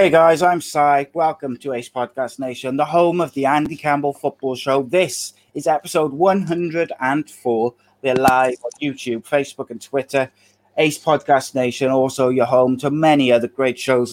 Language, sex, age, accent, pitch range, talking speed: English, male, 30-49, British, 115-145 Hz, 165 wpm